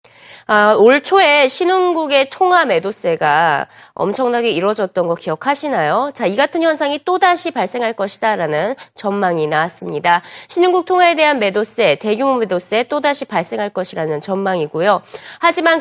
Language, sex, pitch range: Korean, female, 185-300 Hz